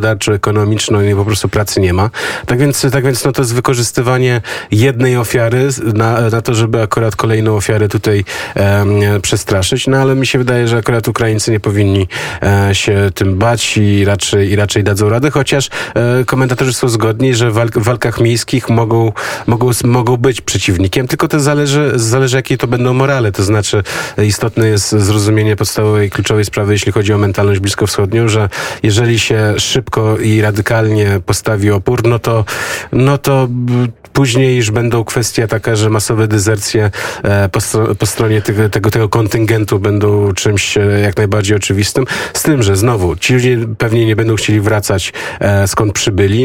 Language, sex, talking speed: Polish, male, 155 wpm